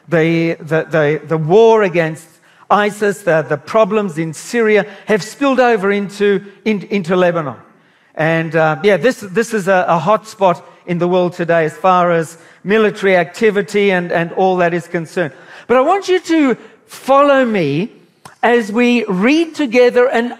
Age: 50-69